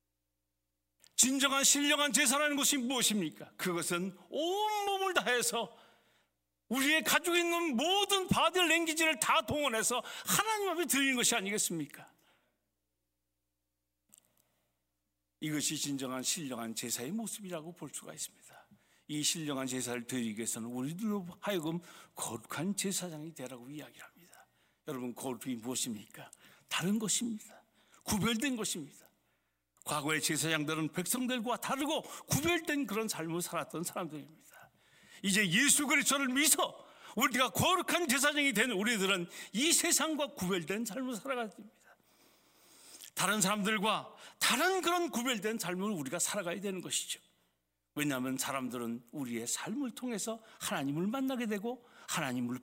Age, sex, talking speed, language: 60-79, male, 105 wpm, English